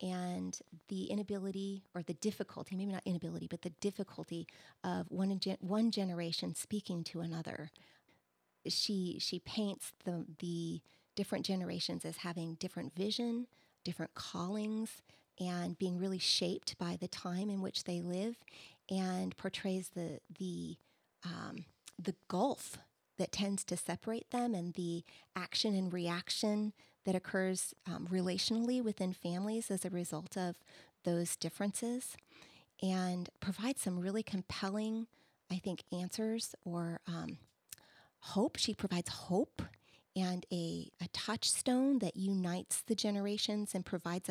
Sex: female